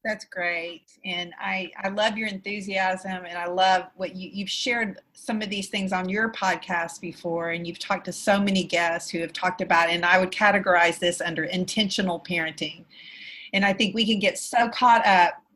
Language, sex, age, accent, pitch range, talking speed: English, female, 40-59, American, 175-210 Hz, 200 wpm